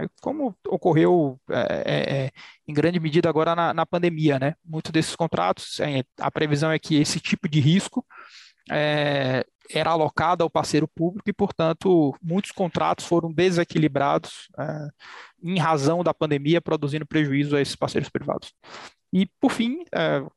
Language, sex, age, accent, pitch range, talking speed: Portuguese, male, 20-39, Brazilian, 150-175 Hz, 135 wpm